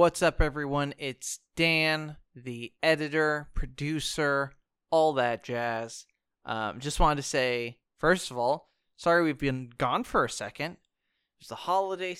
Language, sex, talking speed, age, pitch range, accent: English, male, 145 wpm, 20-39, 120-165 Hz, American